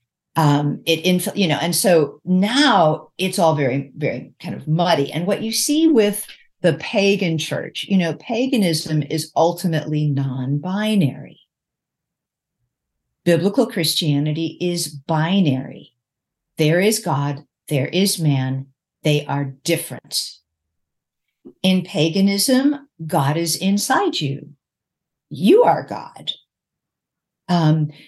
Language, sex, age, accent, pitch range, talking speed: English, female, 50-69, American, 150-195 Hz, 115 wpm